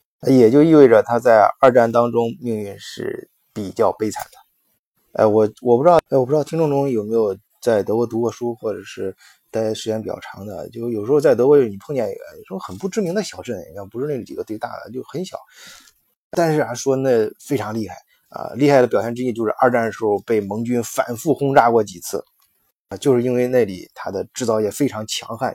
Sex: male